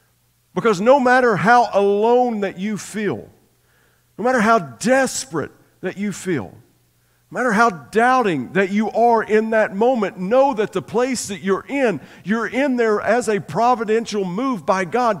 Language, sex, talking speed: English, male, 160 wpm